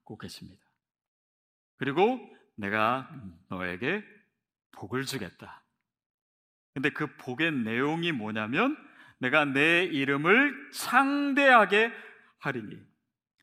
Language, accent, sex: Korean, native, male